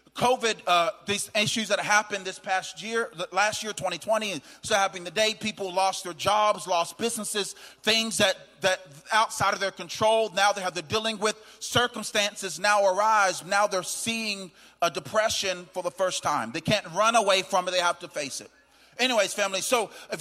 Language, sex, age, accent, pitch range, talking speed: English, male, 40-59, American, 185-215 Hz, 180 wpm